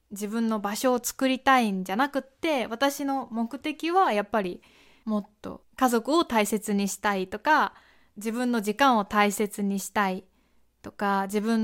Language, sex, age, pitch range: Japanese, female, 20-39, 200-265 Hz